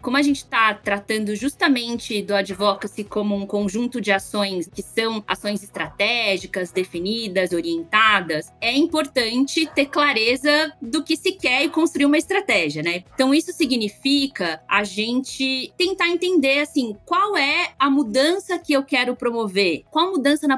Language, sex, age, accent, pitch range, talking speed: Portuguese, female, 20-39, Brazilian, 205-275 Hz, 150 wpm